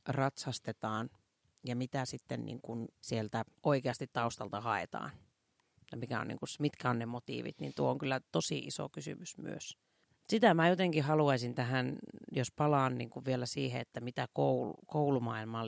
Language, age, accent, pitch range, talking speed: Finnish, 40-59, native, 125-160 Hz, 125 wpm